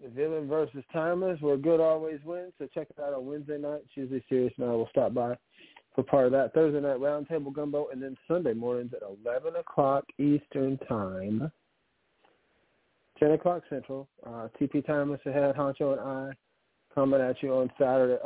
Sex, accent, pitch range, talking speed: male, American, 120-145 Hz, 180 wpm